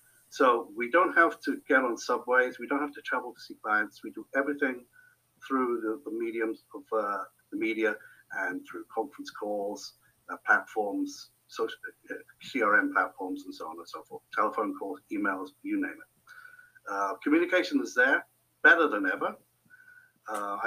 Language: English